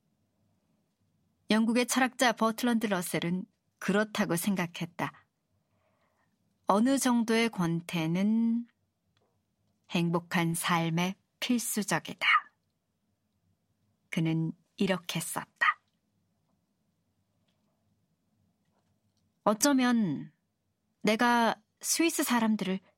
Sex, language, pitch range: male, Korean, 170-230 Hz